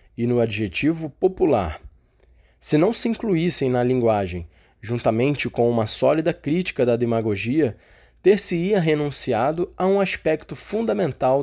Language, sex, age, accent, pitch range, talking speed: Portuguese, male, 20-39, Brazilian, 115-170 Hz, 120 wpm